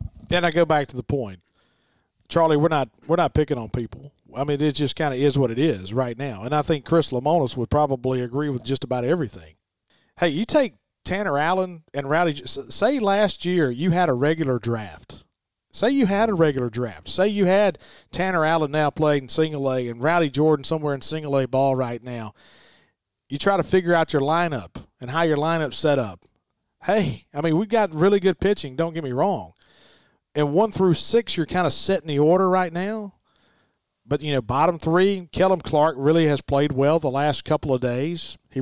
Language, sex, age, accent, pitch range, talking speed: English, male, 40-59, American, 135-170 Hz, 210 wpm